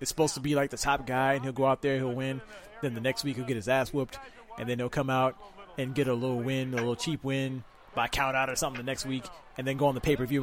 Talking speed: 300 wpm